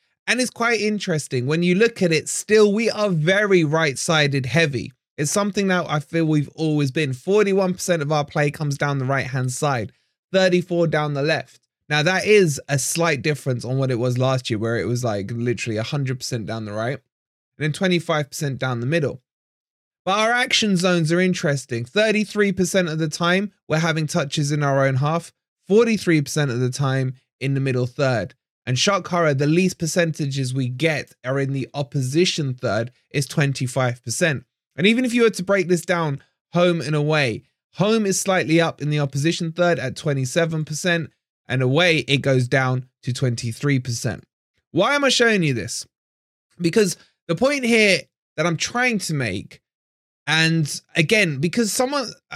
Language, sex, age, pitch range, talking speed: English, male, 20-39, 130-180 Hz, 175 wpm